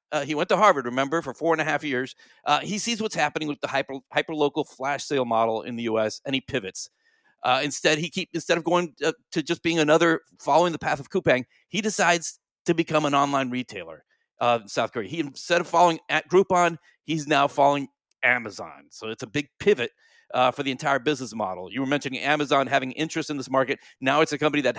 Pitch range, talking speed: 135-175 Hz, 230 wpm